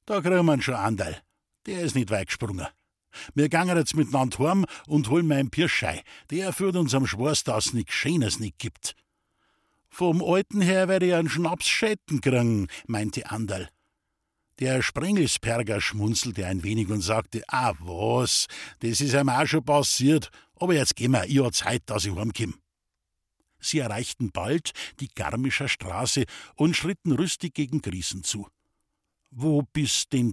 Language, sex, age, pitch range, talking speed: German, male, 60-79, 105-155 Hz, 160 wpm